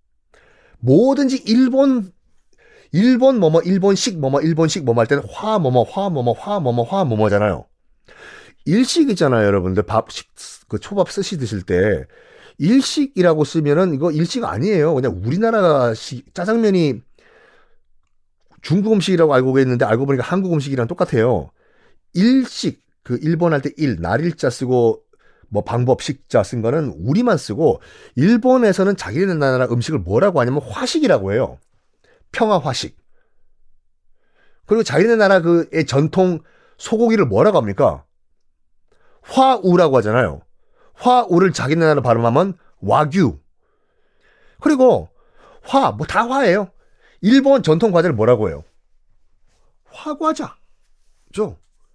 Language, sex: Korean, male